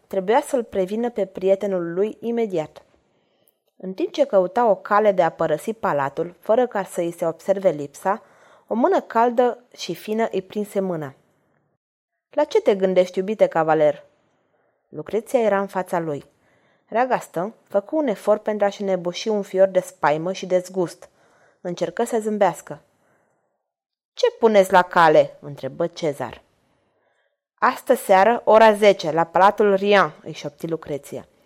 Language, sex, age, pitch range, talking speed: Romanian, female, 20-39, 170-225 Hz, 145 wpm